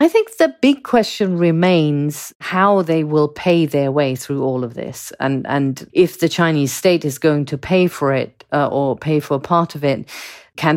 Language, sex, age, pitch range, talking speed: English, female, 40-59, 140-160 Hz, 205 wpm